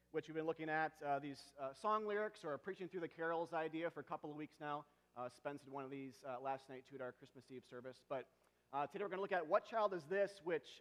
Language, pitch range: English, 135-165 Hz